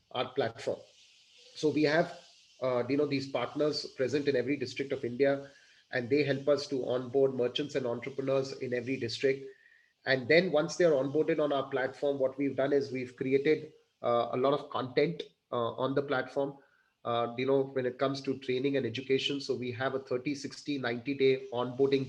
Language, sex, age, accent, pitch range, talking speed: English, male, 30-49, Indian, 130-145 Hz, 185 wpm